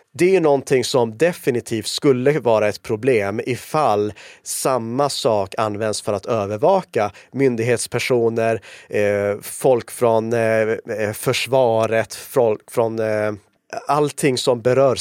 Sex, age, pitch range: male, 30-49, 110-140 Hz